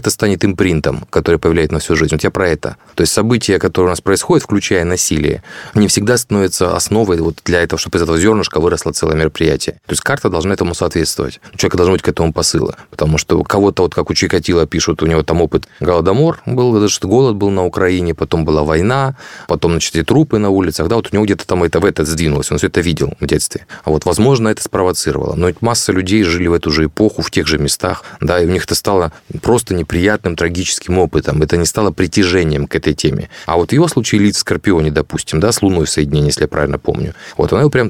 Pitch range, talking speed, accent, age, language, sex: 85-105 Hz, 230 wpm, native, 30-49, Russian, male